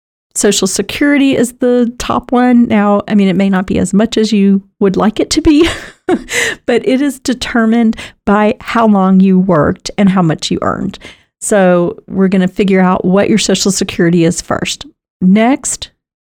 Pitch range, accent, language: 180-220 Hz, American, English